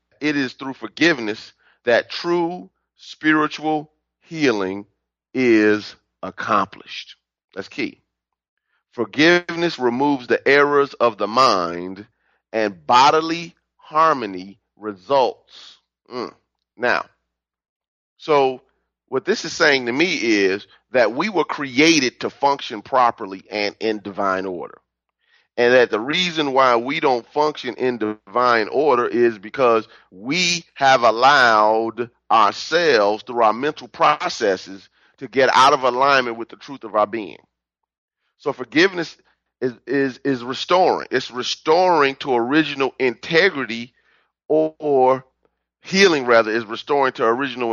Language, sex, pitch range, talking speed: English, male, 105-150 Hz, 120 wpm